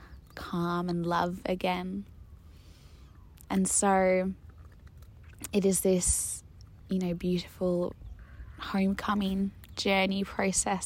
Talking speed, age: 85 wpm, 10-29